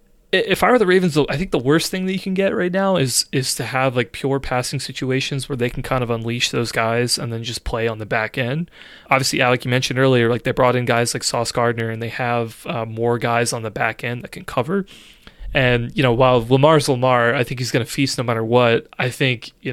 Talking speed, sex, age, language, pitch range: 255 wpm, male, 30-49, English, 120-140 Hz